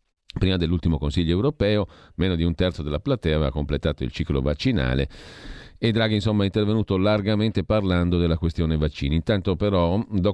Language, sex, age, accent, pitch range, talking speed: Italian, male, 40-59, native, 85-105 Hz, 155 wpm